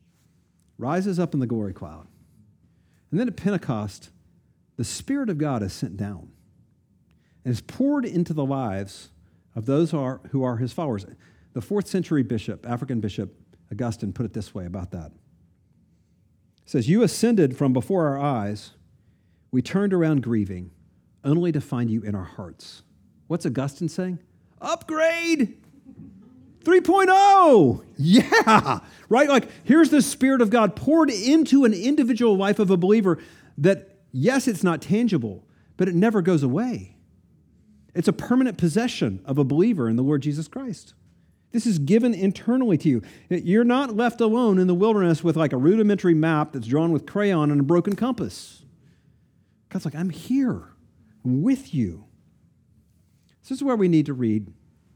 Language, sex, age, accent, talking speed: English, male, 50-69, American, 155 wpm